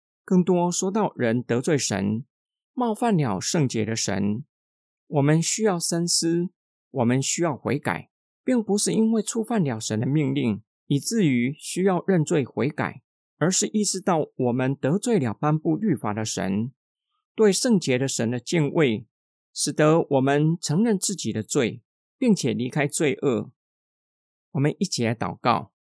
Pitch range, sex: 120-185 Hz, male